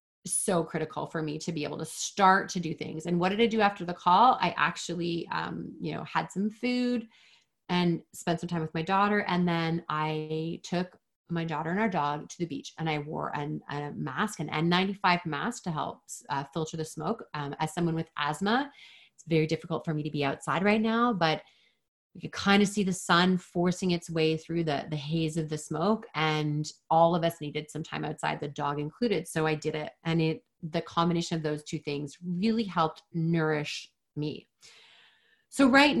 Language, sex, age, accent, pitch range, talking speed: English, female, 30-49, American, 155-200 Hz, 205 wpm